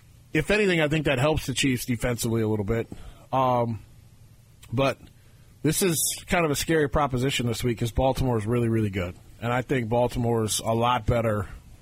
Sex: male